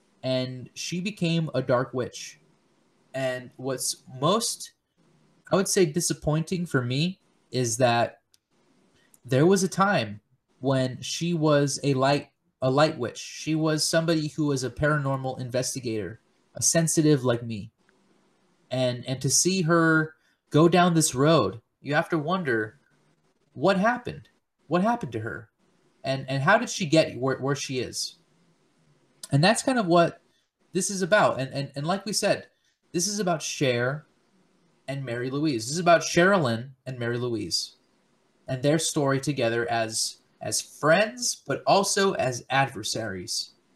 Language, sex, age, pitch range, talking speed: English, male, 20-39, 130-175 Hz, 150 wpm